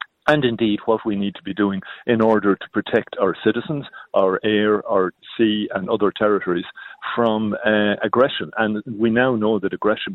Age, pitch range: 50-69, 100-130 Hz